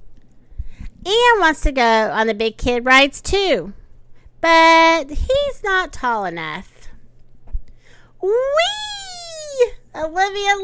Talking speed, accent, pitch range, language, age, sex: 95 wpm, American, 235-375 Hz, English, 40-59, female